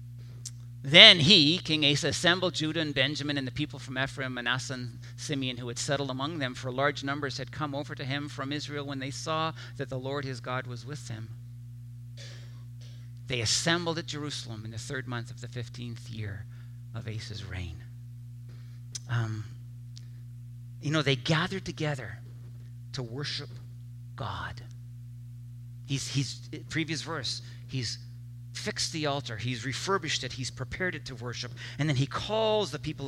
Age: 50-69